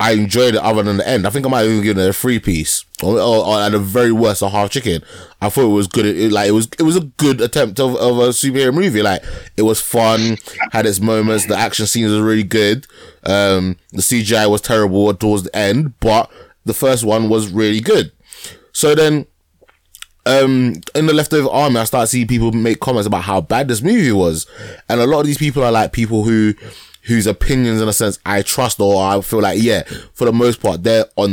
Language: English